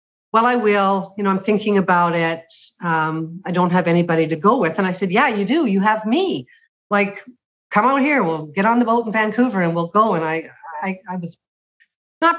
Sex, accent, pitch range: female, American, 170-220 Hz